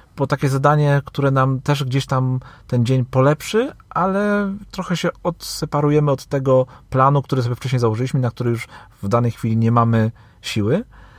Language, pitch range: Polish, 105-135 Hz